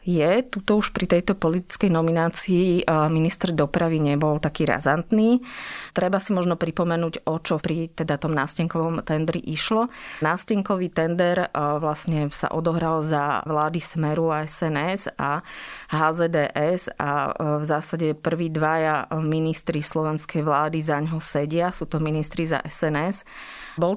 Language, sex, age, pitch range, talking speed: Slovak, female, 30-49, 155-175 Hz, 130 wpm